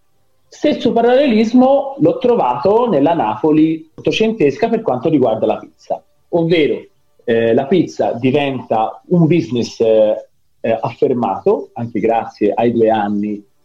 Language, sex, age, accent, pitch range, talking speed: Italian, male, 40-59, native, 140-220 Hz, 115 wpm